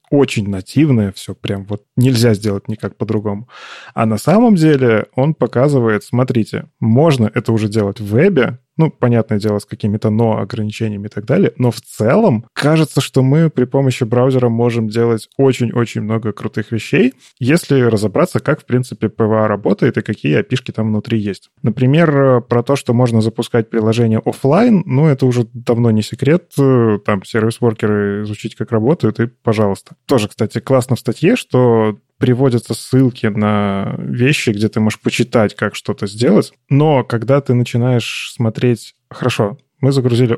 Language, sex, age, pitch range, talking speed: Russian, male, 20-39, 110-130 Hz, 160 wpm